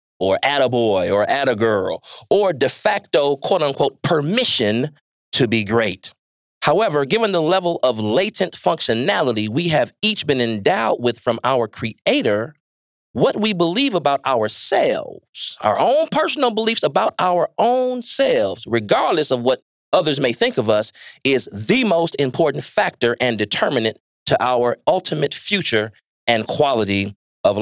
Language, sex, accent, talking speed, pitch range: English, male, American, 150 wpm, 125-205 Hz